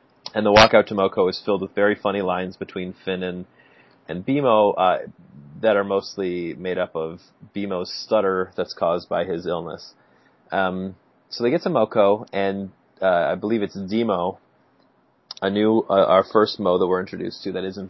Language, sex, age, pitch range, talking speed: English, male, 30-49, 90-105 Hz, 180 wpm